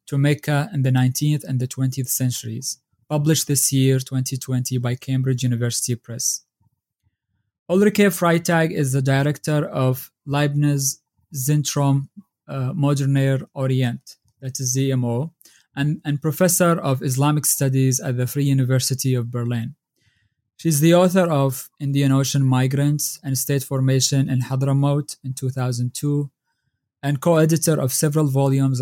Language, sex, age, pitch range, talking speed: English, male, 20-39, 130-150 Hz, 125 wpm